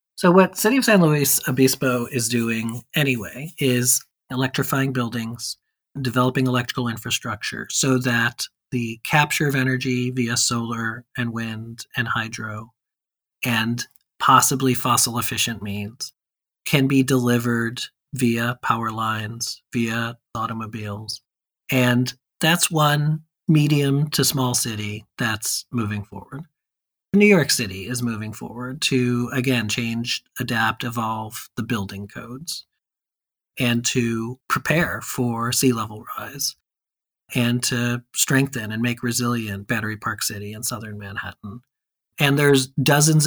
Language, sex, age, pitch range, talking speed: English, male, 40-59, 115-130 Hz, 120 wpm